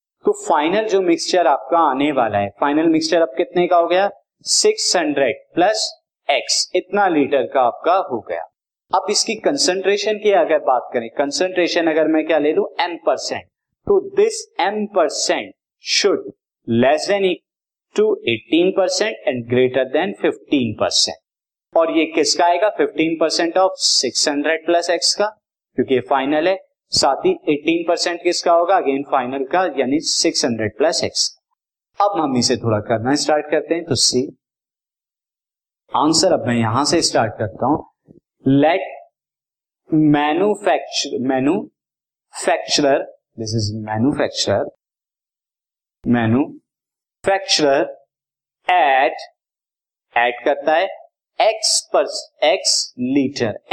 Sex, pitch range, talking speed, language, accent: male, 140-205 Hz, 130 wpm, Hindi, native